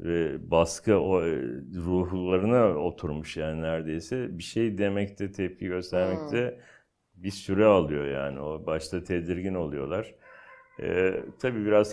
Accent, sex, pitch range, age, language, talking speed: native, male, 80-100 Hz, 60-79, Turkish, 125 wpm